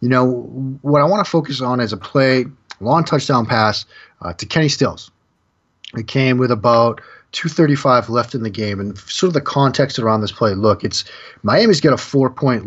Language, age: English, 30-49